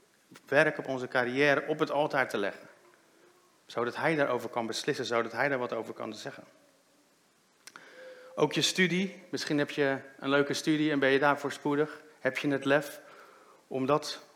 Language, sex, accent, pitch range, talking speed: Dutch, male, Dutch, 130-150 Hz, 175 wpm